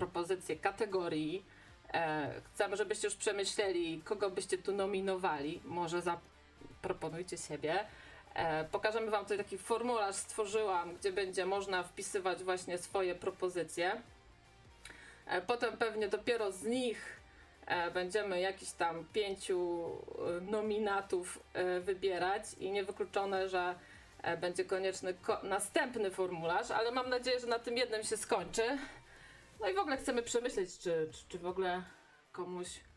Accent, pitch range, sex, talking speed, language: native, 175-220 Hz, female, 120 wpm, Polish